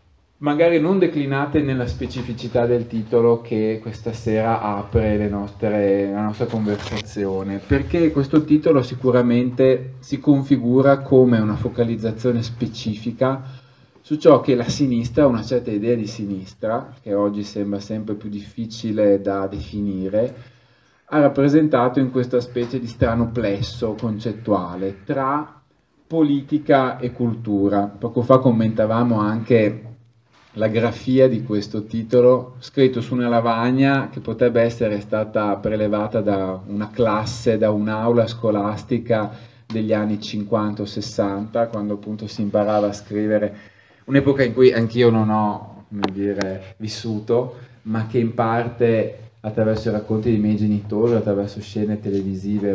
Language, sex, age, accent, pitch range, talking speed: Italian, male, 30-49, native, 105-125 Hz, 125 wpm